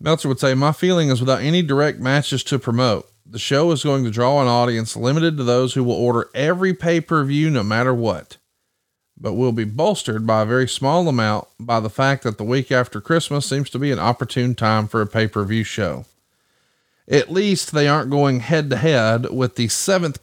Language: English